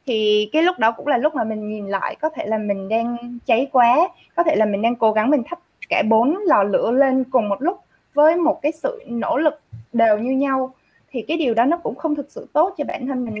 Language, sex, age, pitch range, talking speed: Vietnamese, female, 20-39, 215-295 Hz, 260 wpm